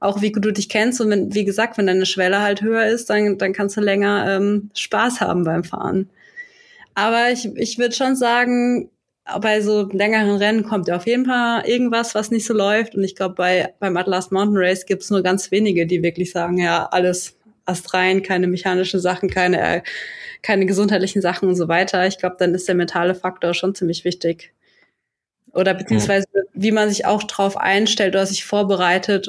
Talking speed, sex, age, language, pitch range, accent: 195 wpm, female, 20-39, German, 185-215 Hz, German